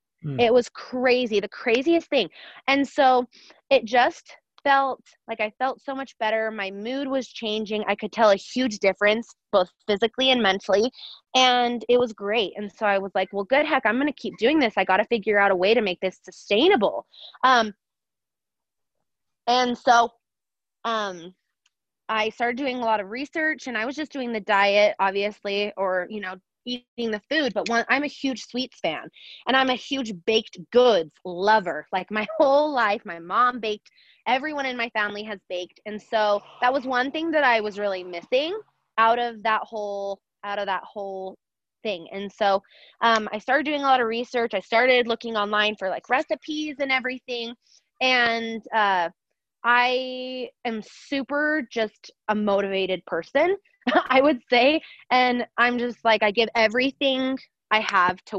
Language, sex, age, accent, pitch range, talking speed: English, female, 20-39, American, 205-260 Hz, 180 wpm